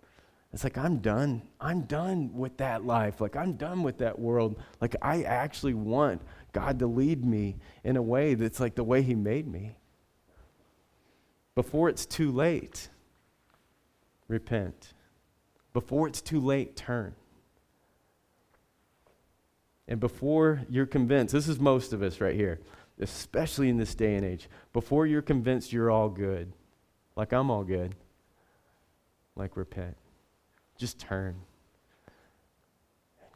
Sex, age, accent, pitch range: male, 30-49, American, 95-135 Hz